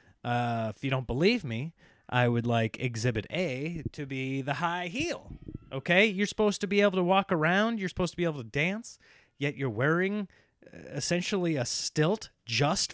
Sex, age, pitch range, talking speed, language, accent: male, 30-49, 120-175 Hz, 185 wpm, English, American